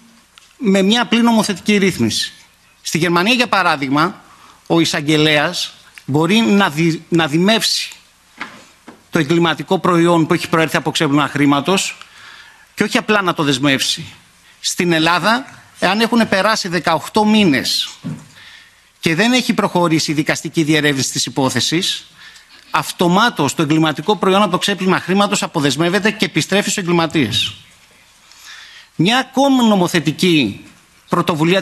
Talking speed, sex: 115 wpm, male